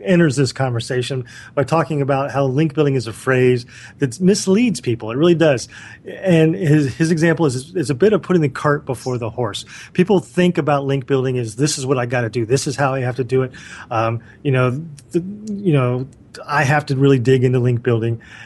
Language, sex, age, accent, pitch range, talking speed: English, male, 30-49, American, 125-150 Hz, 220 wpm